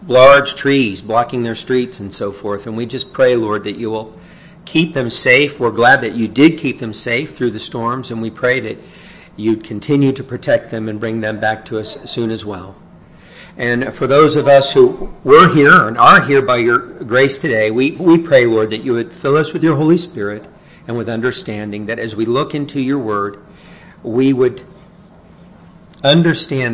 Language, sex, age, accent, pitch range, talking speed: English, male, 50-69, American, 110-145 Hz, 200 wpm